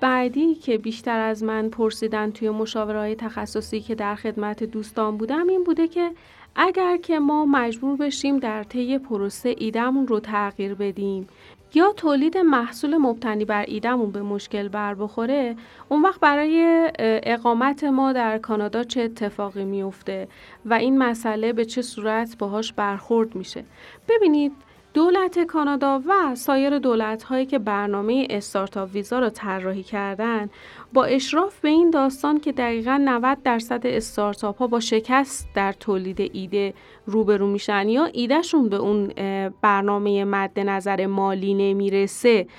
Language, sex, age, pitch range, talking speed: Persian, female, 40-59, 205-275 Hz, 140 wpm